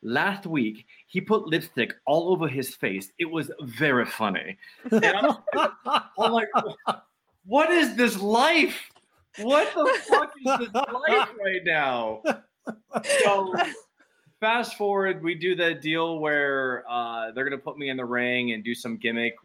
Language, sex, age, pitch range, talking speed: English, male, 20-39, 105-150 Hz, 150 wpm